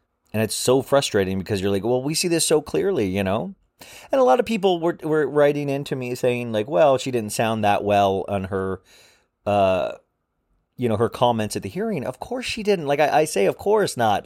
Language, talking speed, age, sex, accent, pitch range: English, 225 wpm, 30-49, male, American, 95-130 Hz